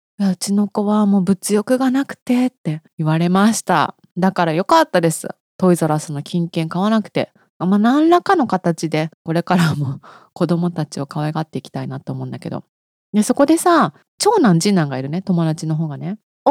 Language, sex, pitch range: Japanese, female, 160-245 Hz